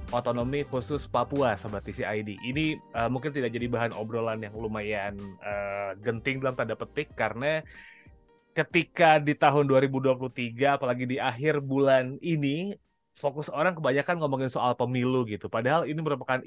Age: 20-39